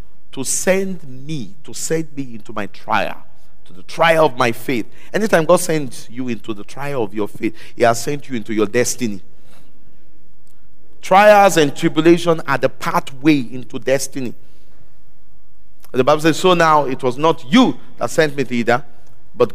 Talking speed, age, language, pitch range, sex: 170 wpm, 50-69, English, 120-165 Hz, male